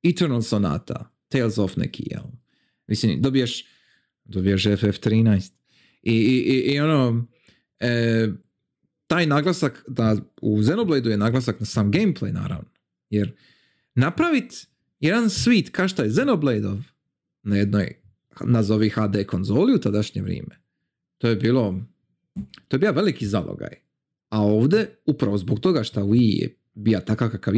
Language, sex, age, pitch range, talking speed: Croatian, male, 40-59, 105-140 Hz, 130 wpm